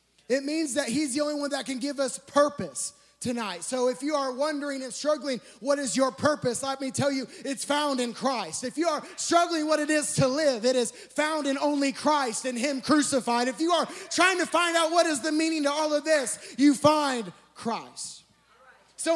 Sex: male